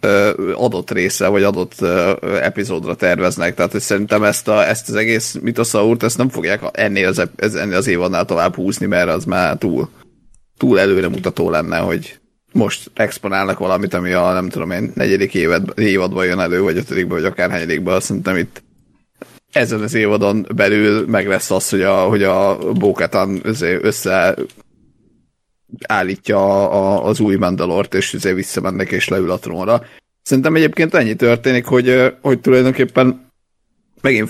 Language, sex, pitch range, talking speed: Hungarian, male, 95-120 Hz, 145 wpm